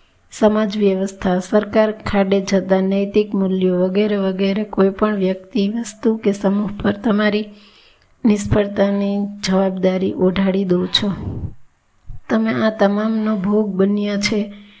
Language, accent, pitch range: Gujarati, native, 195-210 Hz